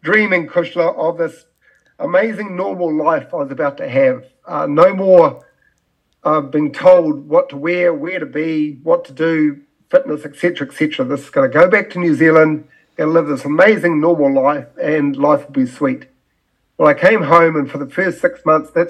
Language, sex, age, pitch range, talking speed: English, male, 50-69, 145-185 Hz, 200 wpm